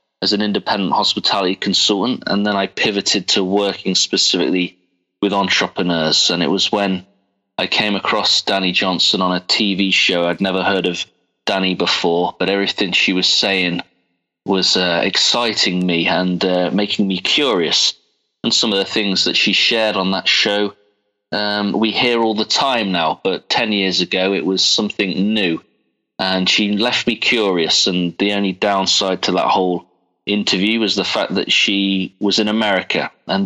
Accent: British